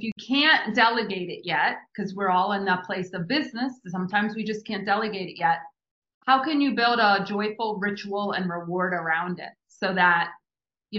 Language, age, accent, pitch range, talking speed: English, 30-49, American, 195-245 Hz, 190 wpm